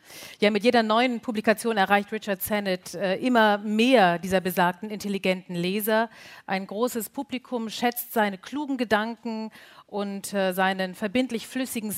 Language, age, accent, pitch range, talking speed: German, 50-69, German, 200-245 Hz, 135 wpm